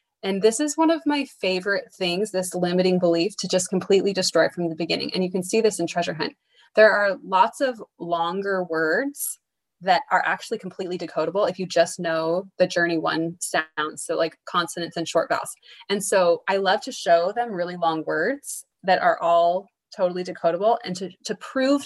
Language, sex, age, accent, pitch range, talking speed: English, female, 20-39, American, 175-220 Hz, 190 wpm